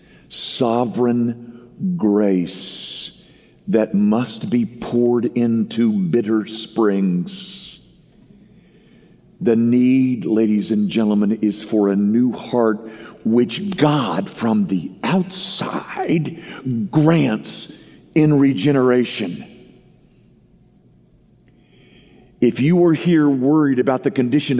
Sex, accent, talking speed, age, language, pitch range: male, American, 85 wpm, 50-69, English, 110-175 Hz